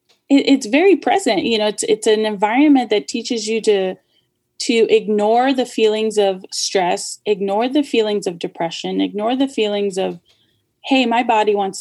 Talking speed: 165 wpm